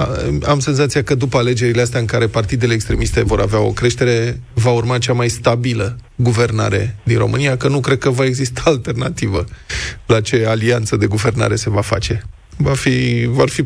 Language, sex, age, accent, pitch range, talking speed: Romanian, male, 20-39, native, 115-130 Hz, 175 wpm